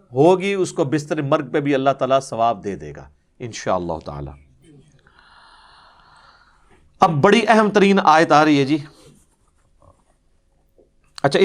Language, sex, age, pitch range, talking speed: Urdu, male, 50-69, 140-185 Hz, 140 wpm